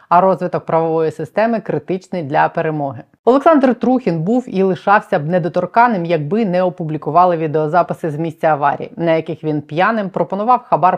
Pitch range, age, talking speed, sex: 160-210 Hz, 30-49, 150 wpm, female